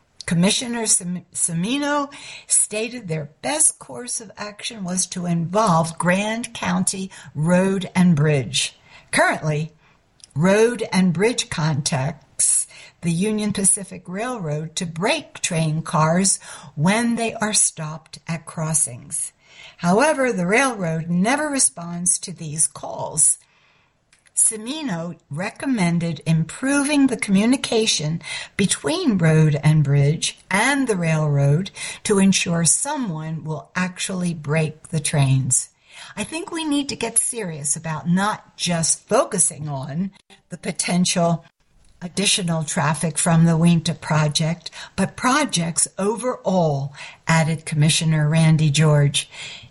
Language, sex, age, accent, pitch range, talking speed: English, female, 60-79, American, 155-210 Hz, 110 wpm